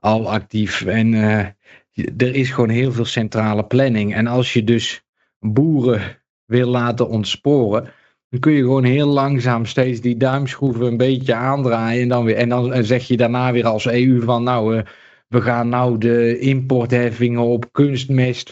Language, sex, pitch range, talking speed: Dutch, male, 110-130 Hz, 160 wpm